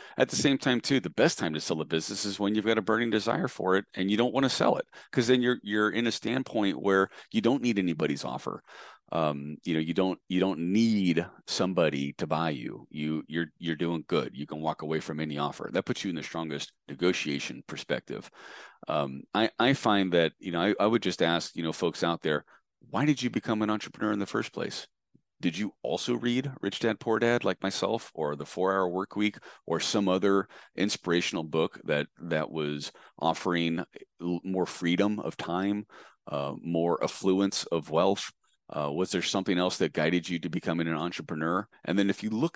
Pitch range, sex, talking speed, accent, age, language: 80-105 Hz, male, 210 wpm, American, 40-59, English